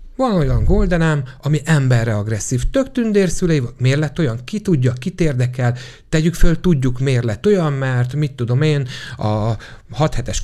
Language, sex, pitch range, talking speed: Hungarian, male, 120-155 Hz, 155 wpm